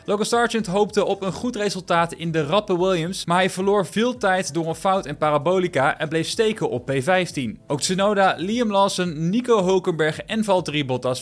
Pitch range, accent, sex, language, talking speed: 150-195 Hz, Dutch, male, Dutch, 185 wpm